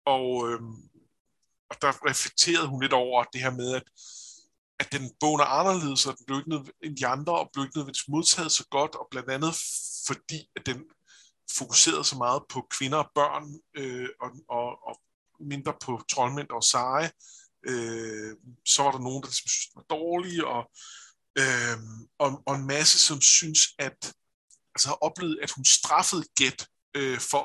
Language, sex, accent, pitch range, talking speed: Danish, male, native, 130-160 Hz, 170 wpm